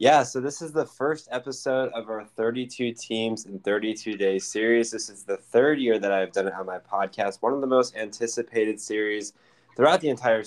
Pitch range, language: 105-125 Hz, English